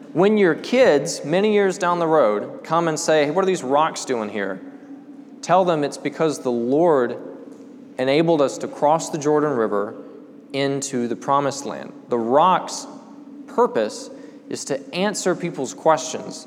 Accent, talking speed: American, 155 wpm